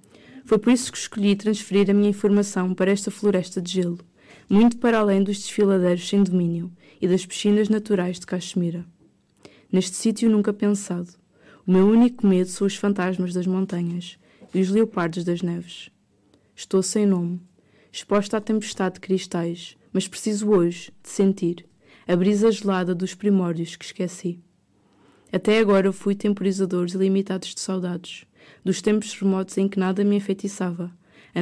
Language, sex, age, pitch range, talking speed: Portuguese, female, 20-39, 180-205 Hz, 155 wpm